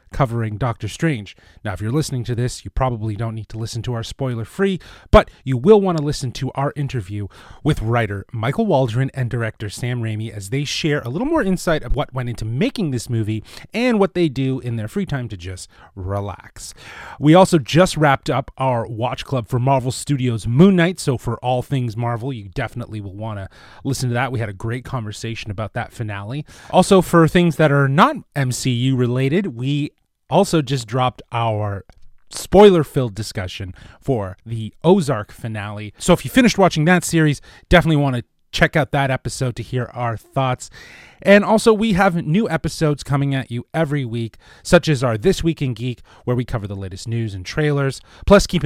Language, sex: English, male